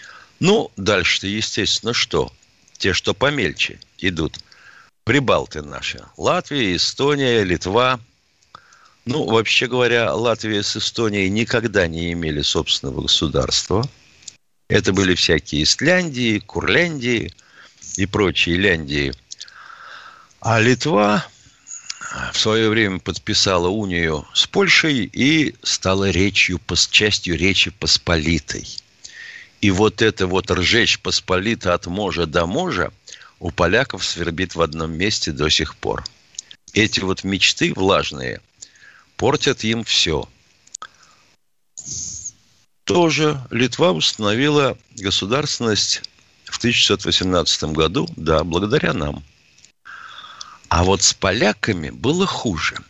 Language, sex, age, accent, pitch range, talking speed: Russian, male, 50-69, native, 85-115 Hz, 100 wpm